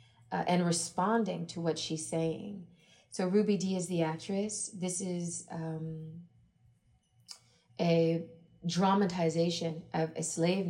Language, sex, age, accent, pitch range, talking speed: English, female, 30-49, American, 160-180 Hz, 120 wpm